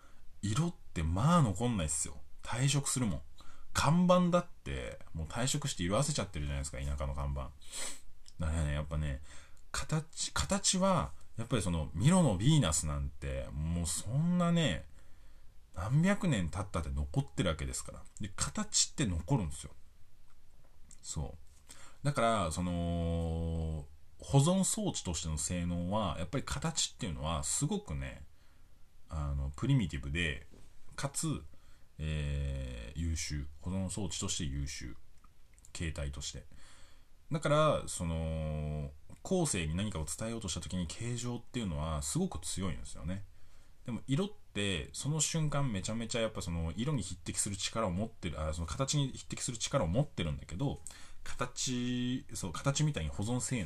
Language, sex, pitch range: Japanese, male, 75-120 Hz